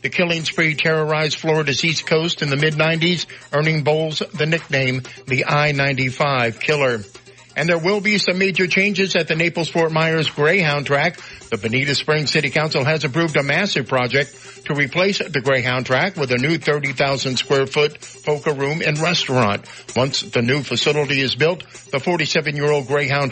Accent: American